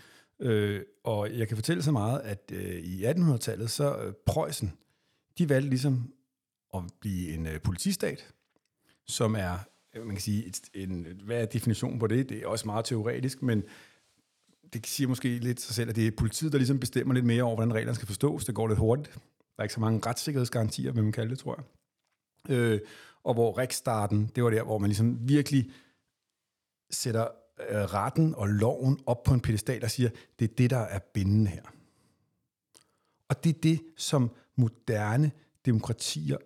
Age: 50-69